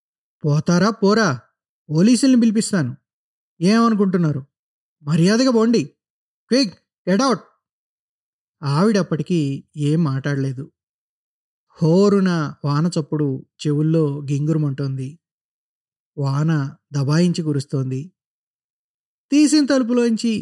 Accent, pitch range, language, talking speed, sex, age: native, 140-185 Hz, Telugu, 65 wpm, male, 20-39